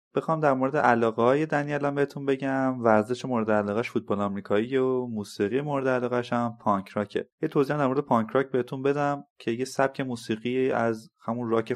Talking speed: 175 wpm